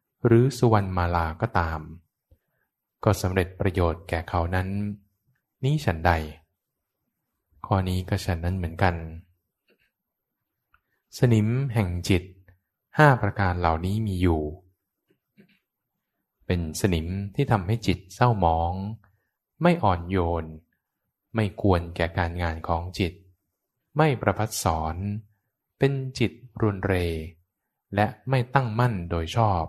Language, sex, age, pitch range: English, male, 20-39, 90-110 Hz